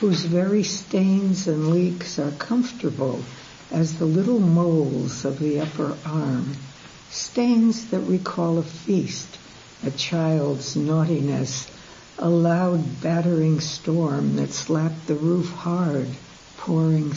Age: 60-79